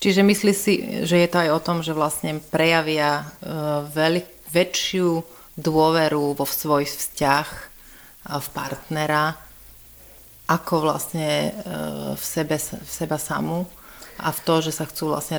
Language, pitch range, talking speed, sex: Slovak, 150-170 Hz, 120 wpm, female